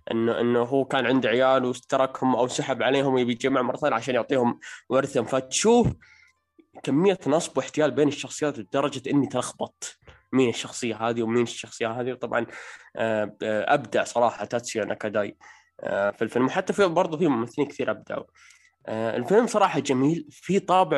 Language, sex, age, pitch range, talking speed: Arabic, male, 20-39, 115-140 Hz, 140 wpm